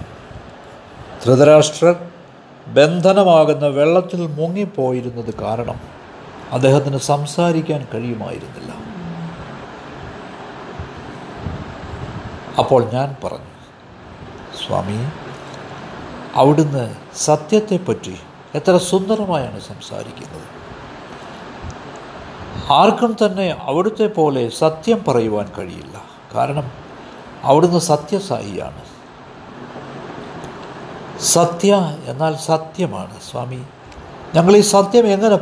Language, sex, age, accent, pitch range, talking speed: Malayalam, male, 60-79, native, 130-180 Hz, 60 wpm